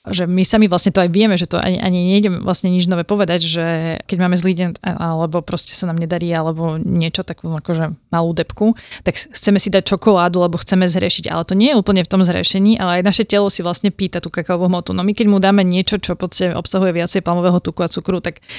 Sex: female